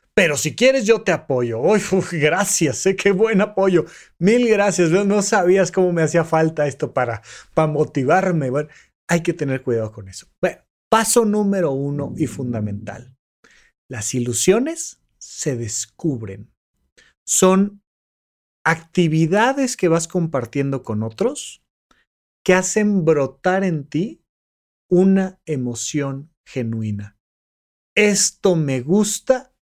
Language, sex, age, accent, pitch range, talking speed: Spanish, male, 40-59, Mexican, 140-200 Hz, 115 wpm